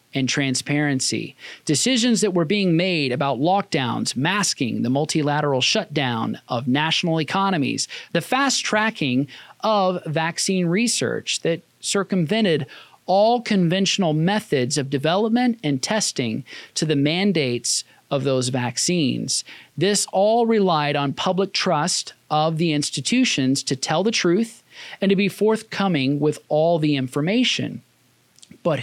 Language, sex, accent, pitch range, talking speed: English, male, American, 135-195 Hz, 125 wpm